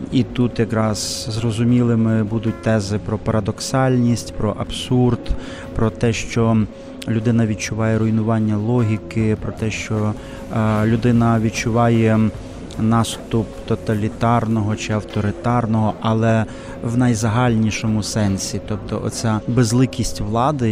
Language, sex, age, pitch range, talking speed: Ukrainian, male, 20-39, 110-120 Hz, 100 wpm